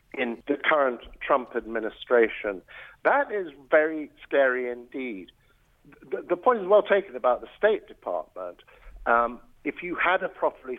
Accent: British